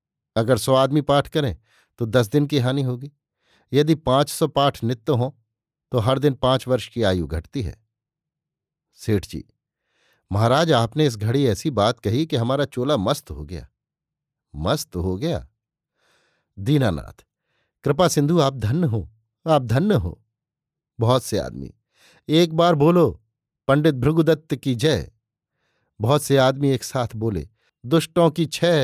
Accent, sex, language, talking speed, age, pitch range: native, male, Hindi, 145 wpm, 50-69, 110-145 Hz